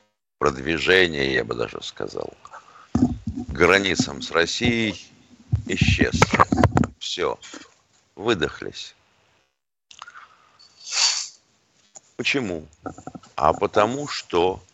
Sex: male